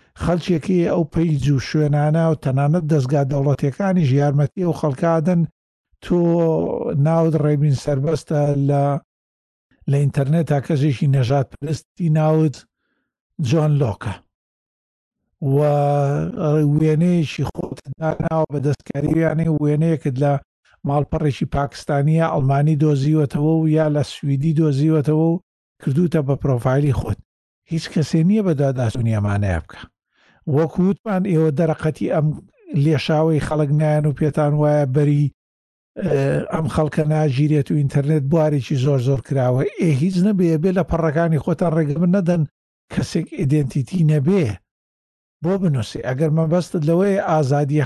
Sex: male